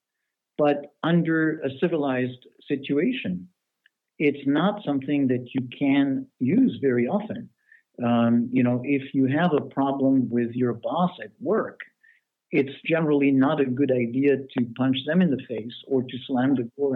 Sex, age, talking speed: male, 60-79, 155 wpm